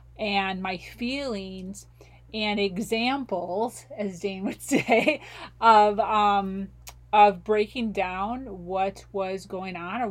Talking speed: 115 wpm